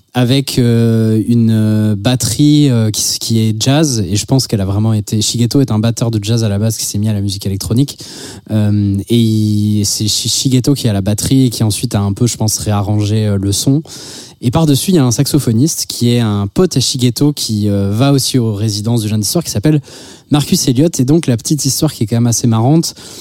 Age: 20-39